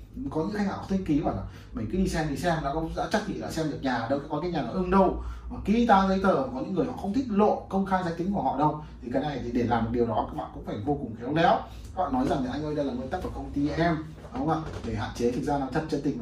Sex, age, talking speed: male, 20-39, 335 wpm